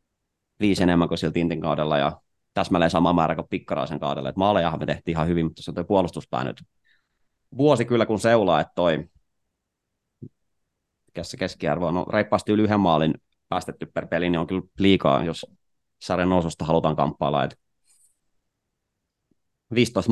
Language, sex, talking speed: Finnish, male, 145 wpm